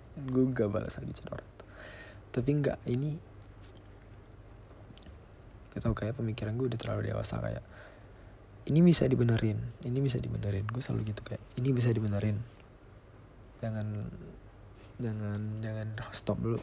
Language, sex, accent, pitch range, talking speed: Indonesian, male, native, 105-120 Hz, 125 wpm